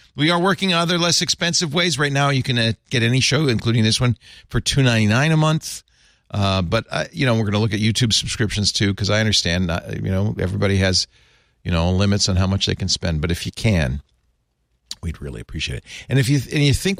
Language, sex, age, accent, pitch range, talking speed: English, male, 50-69, American, 100-155 Hz, 245 wpm